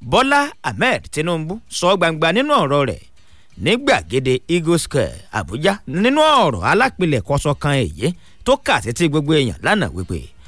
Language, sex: English, male